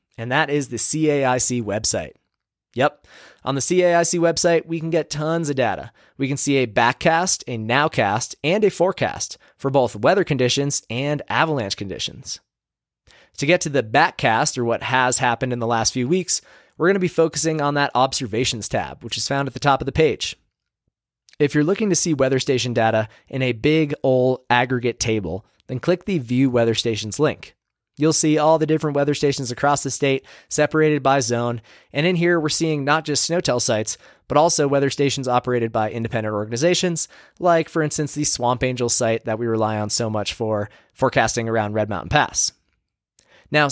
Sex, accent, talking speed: male, American, 190 wpm